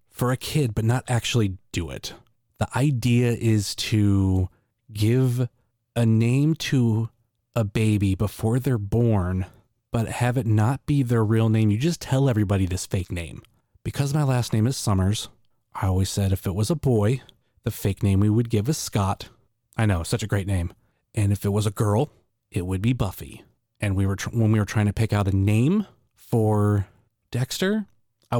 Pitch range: 100-120 Hz